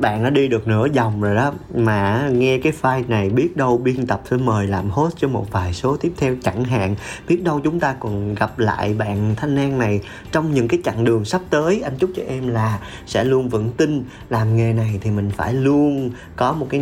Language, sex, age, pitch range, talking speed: Vietnamese, male, 20-39, 110-135 Hz, 235 wpm